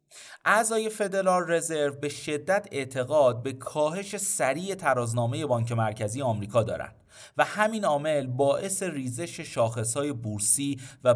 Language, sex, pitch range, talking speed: Persian, male, 120-170 Hz, 120 wpm